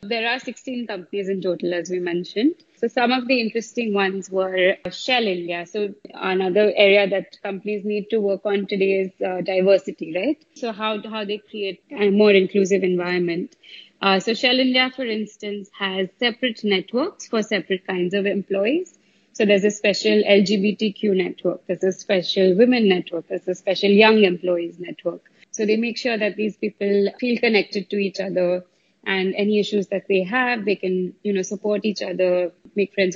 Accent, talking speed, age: Indian, 180 wpm, 20-39